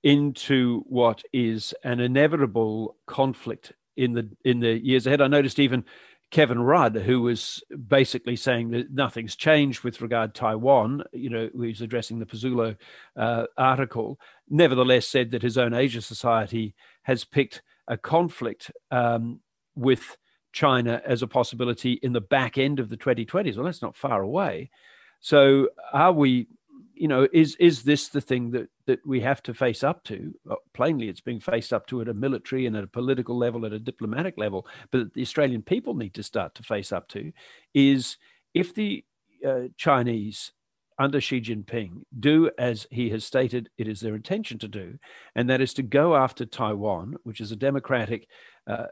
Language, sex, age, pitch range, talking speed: English, male, 50-69, 115-135 Hz, 180 wpm